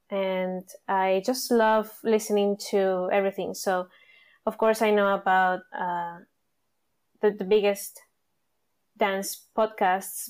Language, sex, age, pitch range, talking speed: English, female, 20-39, 195-235 Hz, 110 wpm